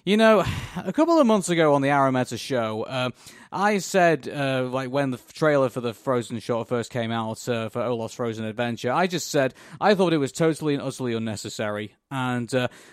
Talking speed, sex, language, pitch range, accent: 205 wpm, male, English, 115-145 Hz, British